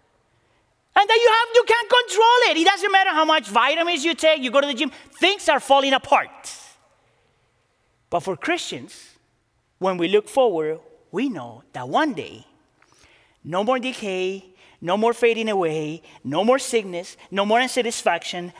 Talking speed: 160 wpm